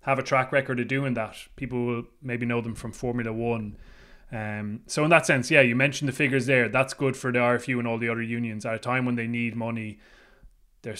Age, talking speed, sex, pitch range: 20-39, 240 wpm, male, 115-130 Hz